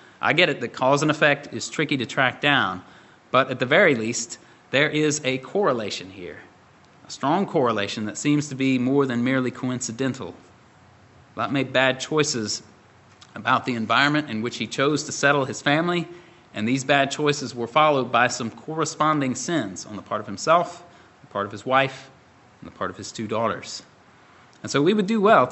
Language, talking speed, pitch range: English, 190 wpm, 120-155 Hz